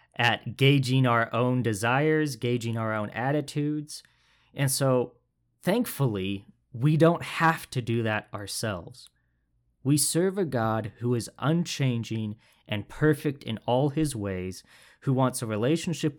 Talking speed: 135 wpm